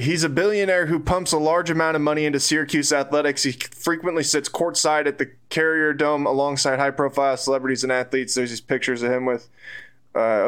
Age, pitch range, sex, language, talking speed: 20-39, 130-155 Hz, male, English, 195 wpm